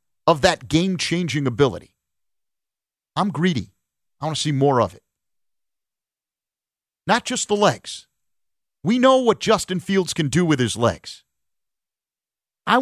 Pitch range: 115-175 Hz